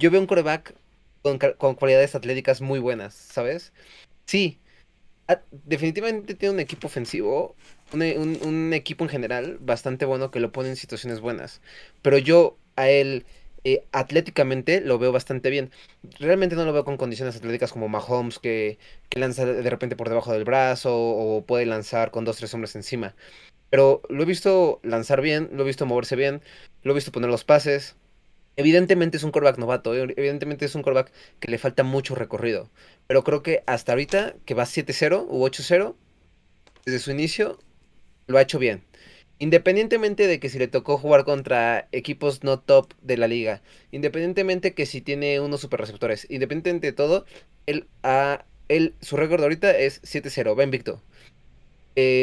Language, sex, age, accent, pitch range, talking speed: Spanish, male, 20-39, Mexican, 125-160 Hz, 175 wpm